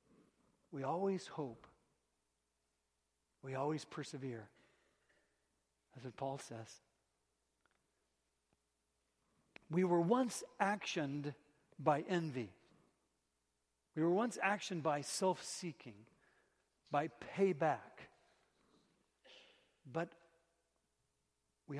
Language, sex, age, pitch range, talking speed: English, male, 60-79, 125-185 Hz, 70 wpm